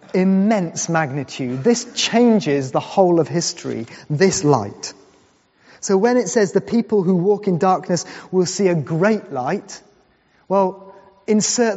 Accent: British